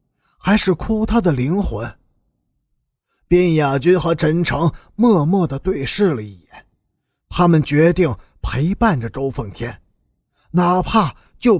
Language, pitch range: Chinese, 145-200 Hz